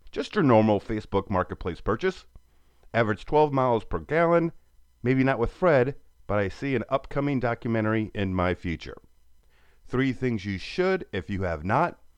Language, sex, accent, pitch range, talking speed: English, male, American, 100-135 Hz, 160 wpm